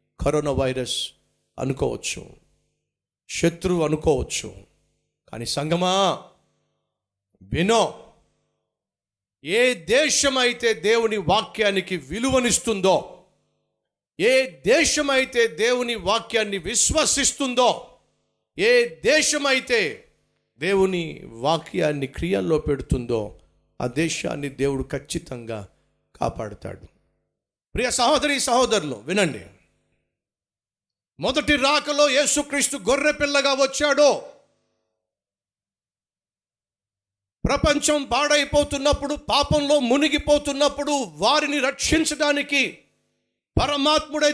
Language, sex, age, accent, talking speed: Telugu, male, 50-69, native, 50 wpm